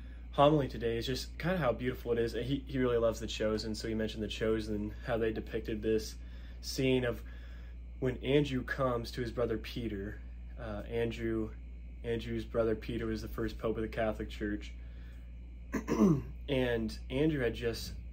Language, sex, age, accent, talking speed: English, male, 20-39, American, 170 wpm